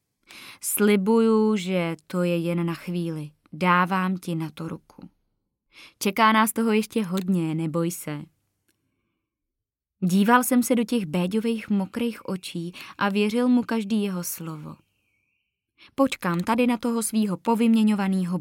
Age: 20-39